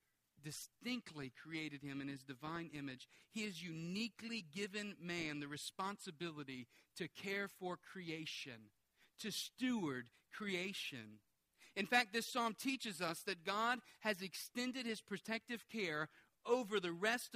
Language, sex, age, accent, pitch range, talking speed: English, male, 40-59, American, 145-200 Hz, 130 wpm